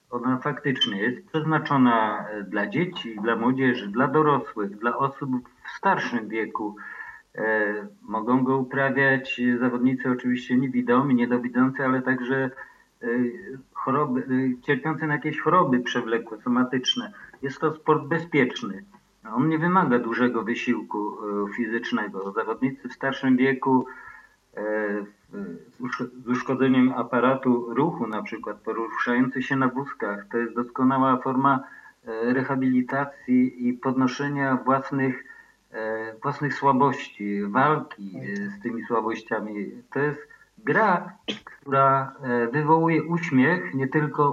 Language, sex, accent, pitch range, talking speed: Polish, male, native, 120-135 Hz, 105 wpm